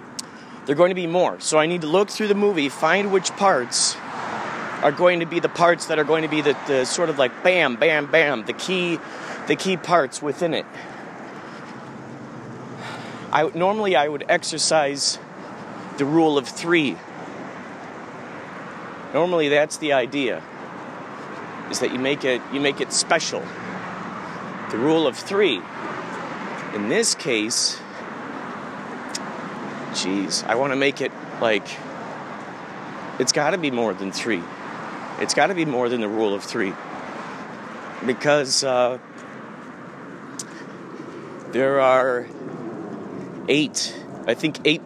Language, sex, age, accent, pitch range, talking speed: English, male, 40-59, American, 130-170 Hz, 140 wpm